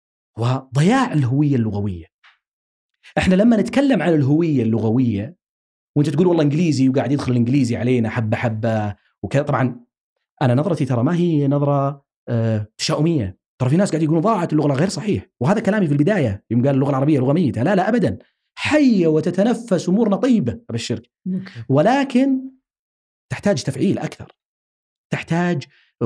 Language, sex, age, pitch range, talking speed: Arabic, male, 40-59, 115-180 Hz, 130 wpm